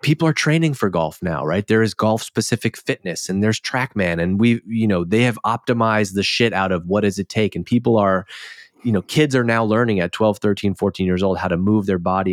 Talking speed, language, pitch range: 250 wpm, English, 90-115 Hz